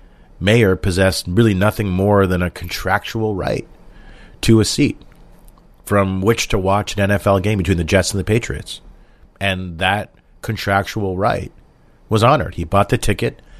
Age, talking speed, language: 40-59, 155 wpm, English